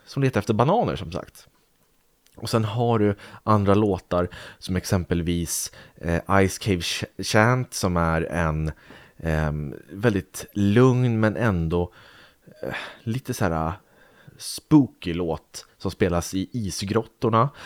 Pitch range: 85-110 Hz